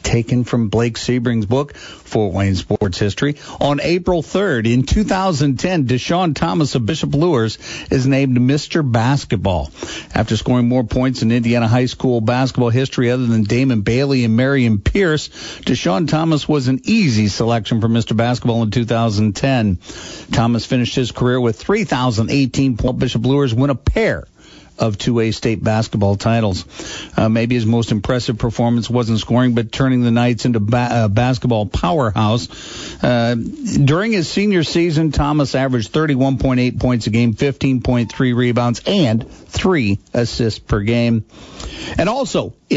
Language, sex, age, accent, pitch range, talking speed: English, male, 50-69, American, 115-140 Hz, 150 wpm